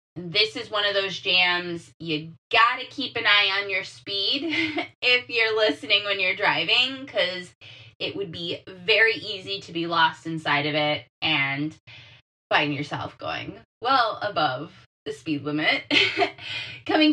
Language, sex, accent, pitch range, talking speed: English, female, American, 155-215 Hz, 145 wpm